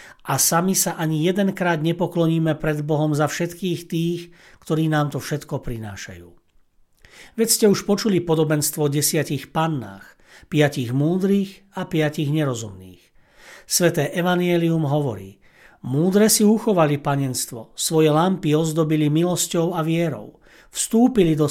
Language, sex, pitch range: Slovak, male, 140-175 Hz